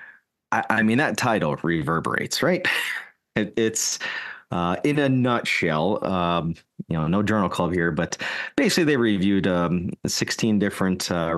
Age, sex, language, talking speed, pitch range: 30-49, male, English, 135 wpm, 80-105 Hz